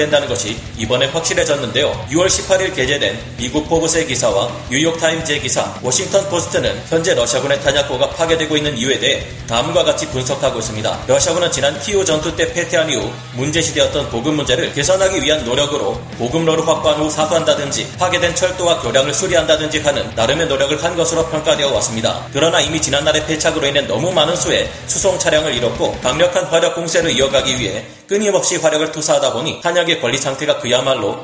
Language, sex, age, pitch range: Korean, male, 30-49, 135-170 Hz